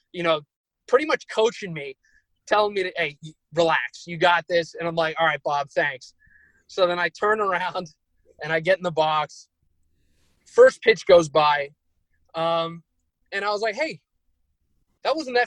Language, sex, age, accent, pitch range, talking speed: English, male, 20-39, American, 155-185 Hz, 170 wpm